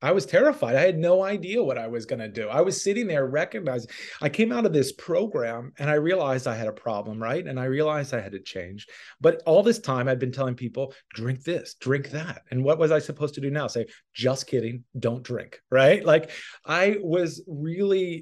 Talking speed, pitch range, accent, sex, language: 225 wpm, 125-155 Hz, American, male, English